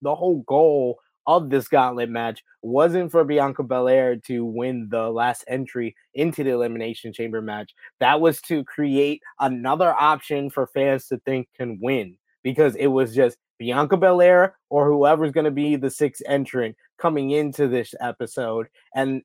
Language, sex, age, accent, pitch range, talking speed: English, male, 20-39, American, 125-155 Hz, 160 wpm